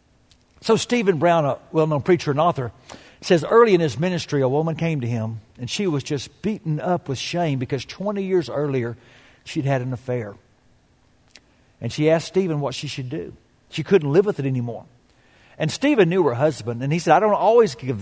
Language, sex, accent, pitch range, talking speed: English, male, American, 130-175 Hz, 200 wpm